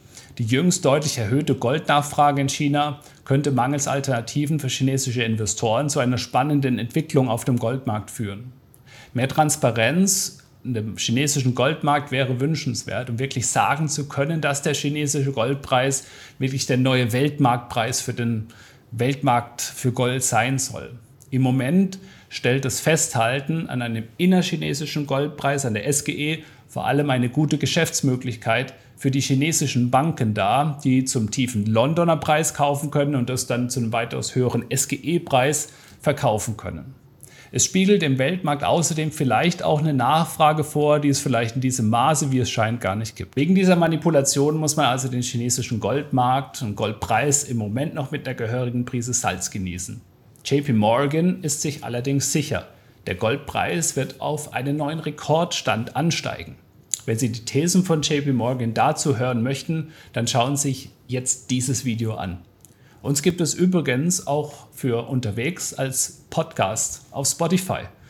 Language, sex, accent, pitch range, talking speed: German, male, German, 120-150 Hz, 150 wpm